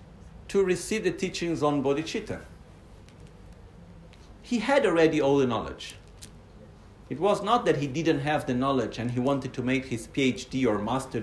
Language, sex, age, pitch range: Italian, male, 50-69, 95-155 Hz